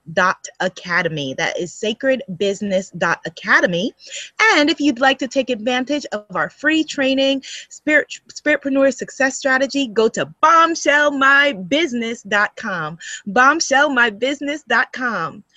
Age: 20-39